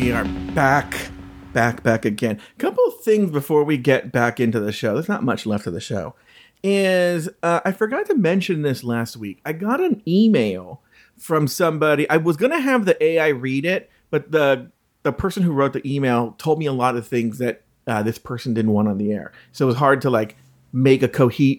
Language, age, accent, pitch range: English, 40-59, American, 120-170 Hz